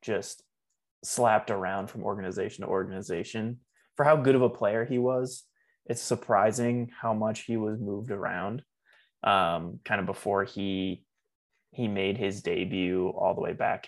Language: English